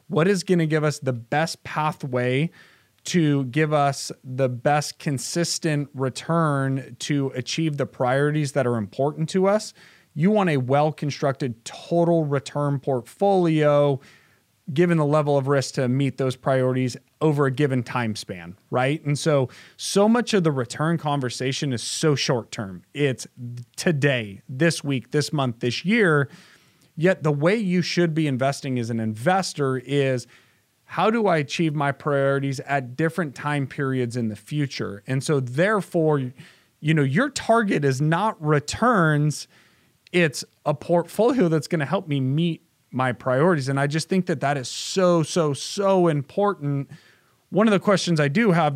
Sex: male